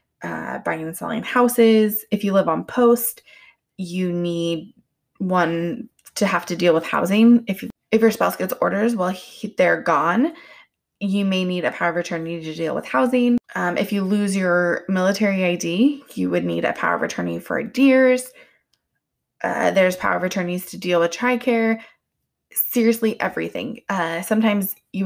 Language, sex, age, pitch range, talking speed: English, female, 20-39, 175-230 Hz, 170 wpm